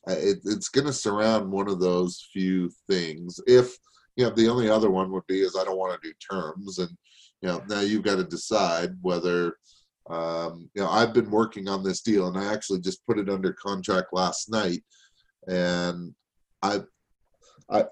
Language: English